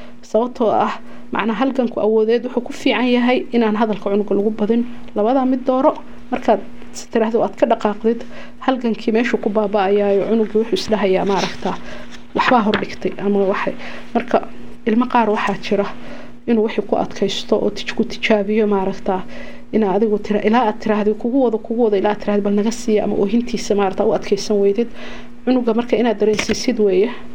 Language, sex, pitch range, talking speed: English, female, 200-235 Hz, 70 wpm